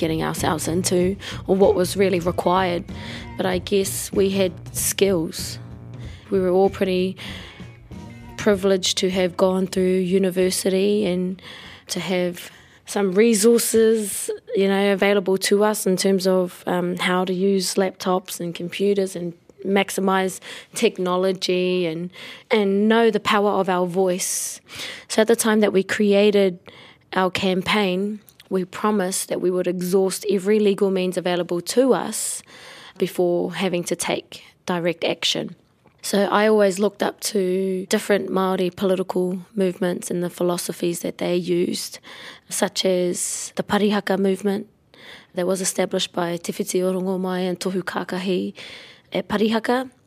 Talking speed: 135 wpm